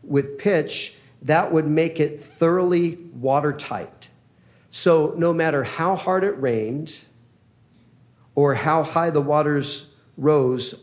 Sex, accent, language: male, American, English